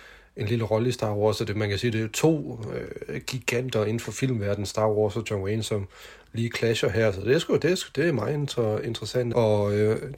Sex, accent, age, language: male, native, 30-49, Danish